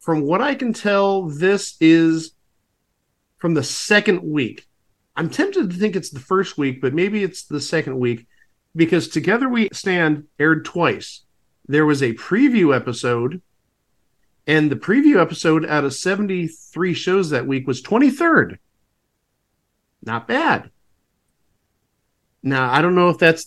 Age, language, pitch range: 50-69, English, 135-185 Hz